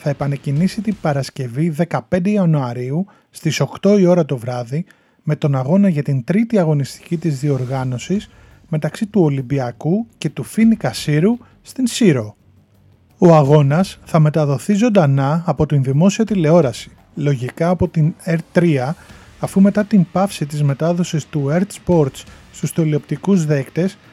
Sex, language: male, Greek